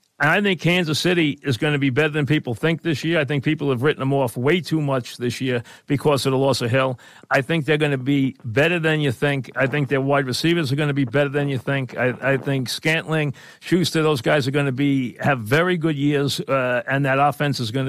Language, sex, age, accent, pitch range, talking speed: English, male, 50-69, American, 140-175 Hz, 260 wpm